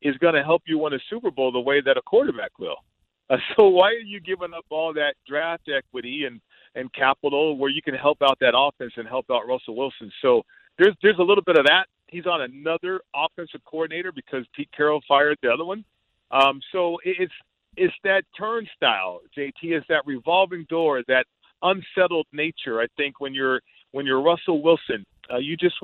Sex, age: male, 50-69